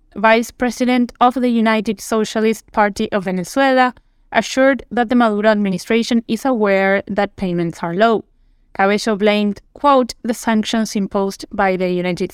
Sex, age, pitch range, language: female, 20-39, 195-230 Hz, English